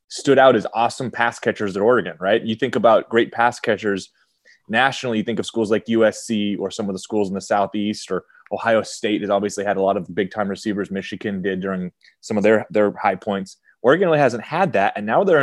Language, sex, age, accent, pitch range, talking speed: English, male, 20-39, American, 95-110 Hz, 225 wpm